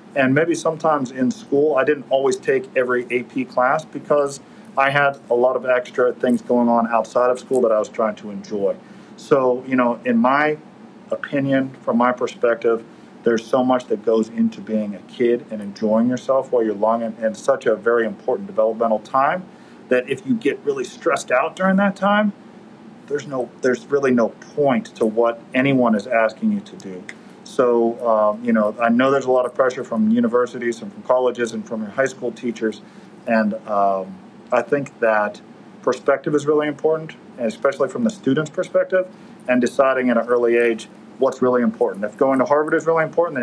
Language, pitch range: English, 115-150 Hz